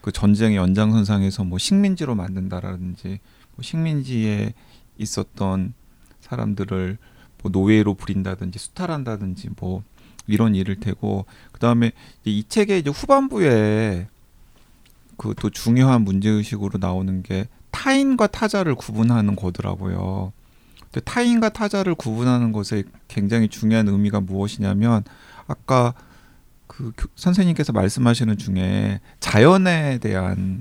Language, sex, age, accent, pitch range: Korean, male, 30-49, native, 100-125 Hz